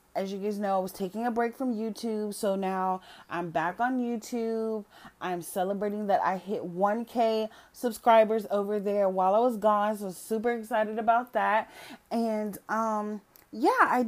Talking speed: 165 wpm